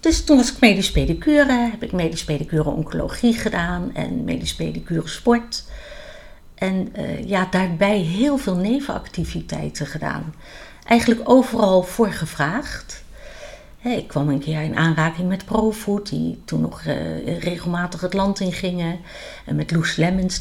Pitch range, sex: 155-215 Hz, female